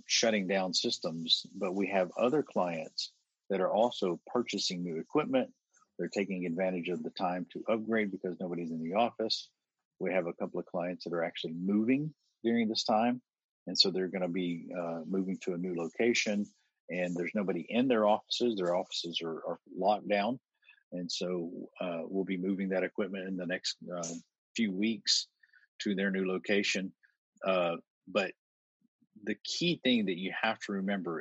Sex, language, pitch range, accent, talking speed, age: male, English, 90-105 Hz, American, 175 wpm, 50-69